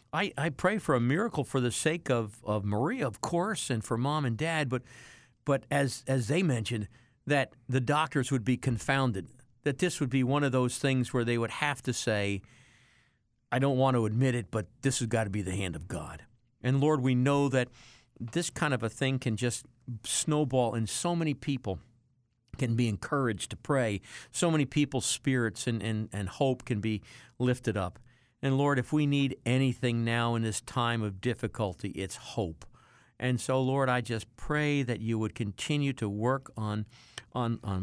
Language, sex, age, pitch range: English, male, 50-69, 115-140 Hz